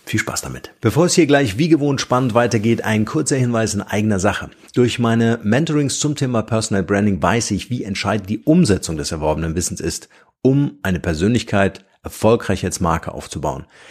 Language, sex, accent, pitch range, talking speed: German, male, German, 95-115 Hz, 175 wpm